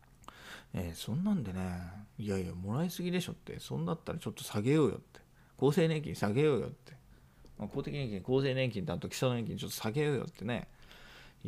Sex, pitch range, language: male, 95-130 Hz, Japanese